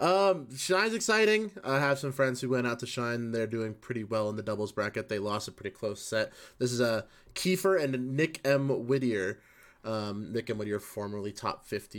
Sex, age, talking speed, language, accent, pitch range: male, 20-39, 210 wpm, English, American, 115-140 Hz